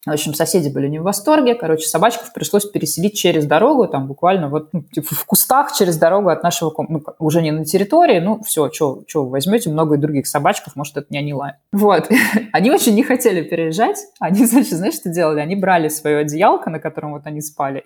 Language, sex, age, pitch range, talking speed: Russian, female, 20-39, 155-215 Hz, 210 wpm